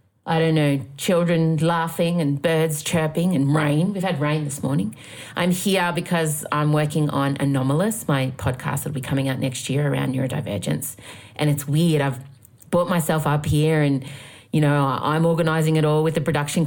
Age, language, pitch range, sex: 30-49, English, 145-215 Hz, female